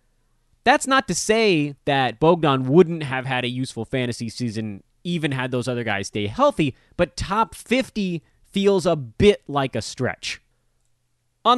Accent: American